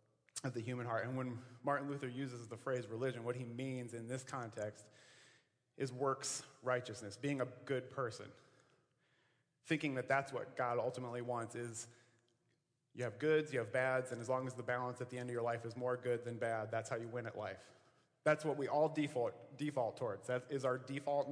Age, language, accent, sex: 30-49, English, American, male